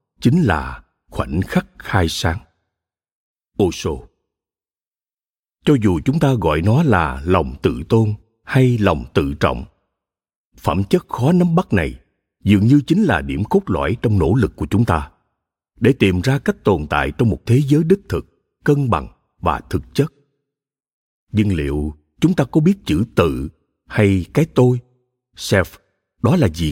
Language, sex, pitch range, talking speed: Vietnamese, male, 95-140 Hz, 160 wpm